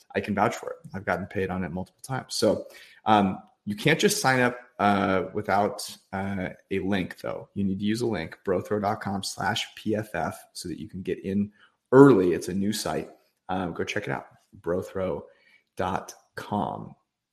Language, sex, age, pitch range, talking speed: English, male, 30-49, 100-115 Hz, 175 wpm